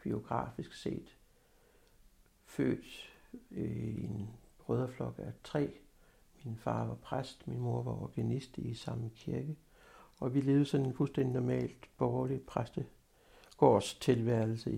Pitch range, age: 105-140 Hz, 60-79